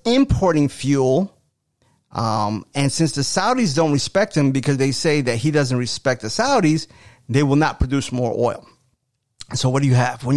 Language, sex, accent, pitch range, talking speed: English, male, American, 125-160 Hz, 180 wpm